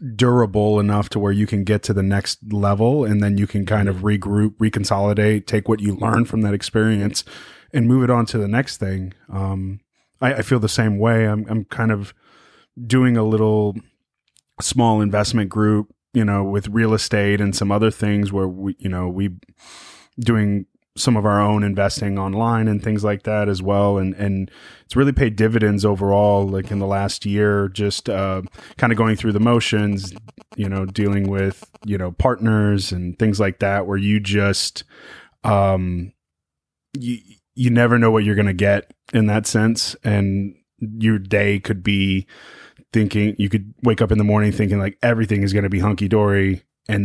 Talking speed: 190 wpm